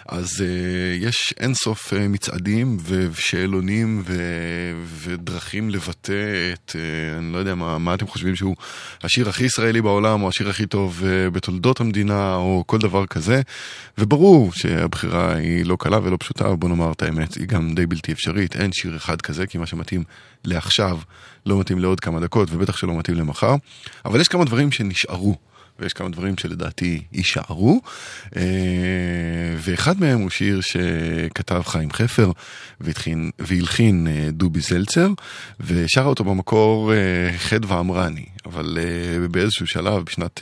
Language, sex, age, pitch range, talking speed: Hebrew, male, 20-39, 85-100 Hz, 145 wpm